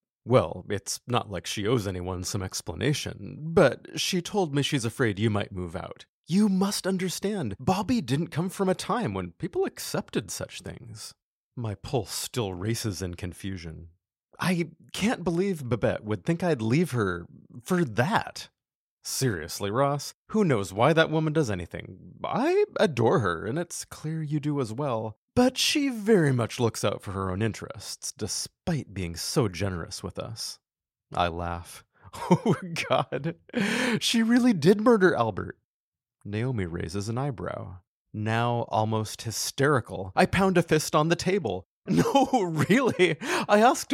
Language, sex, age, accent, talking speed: English, male, 30-49, American, 155 wpm